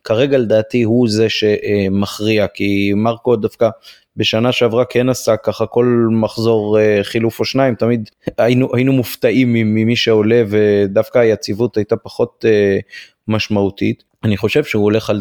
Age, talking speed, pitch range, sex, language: 30-49, 135 wpm, 100-120 Hz, male, Hebrew